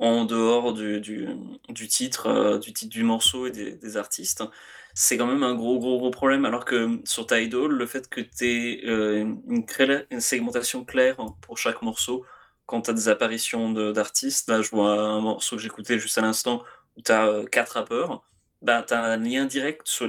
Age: 20-39